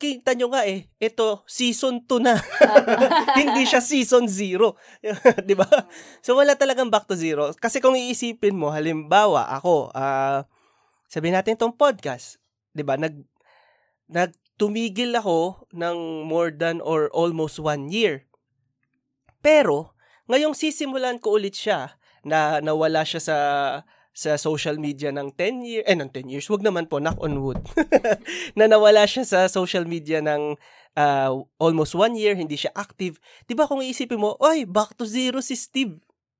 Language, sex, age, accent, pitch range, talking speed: Filipino, male, 20-39, native, 160-245 Hz, 155 wpm